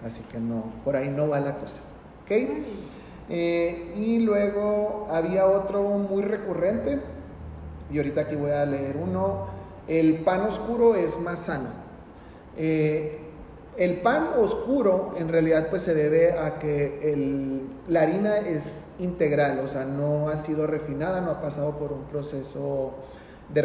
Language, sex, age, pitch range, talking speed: Spanish, male, 40-59, 140-180 Hz, 145 wpm